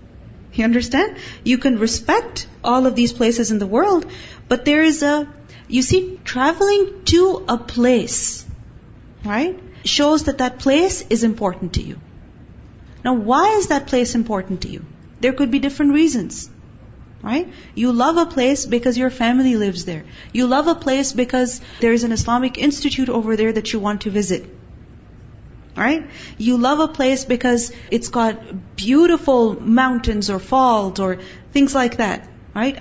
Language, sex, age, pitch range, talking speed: English, female, 30-49, 225-280 Hz, 160 wpm